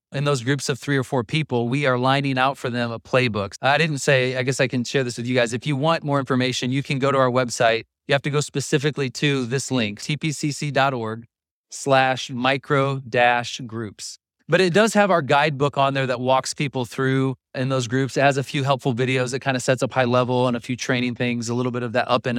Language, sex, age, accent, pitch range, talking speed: English, male, 30-49, American, 125-140 Hz, 240 wpm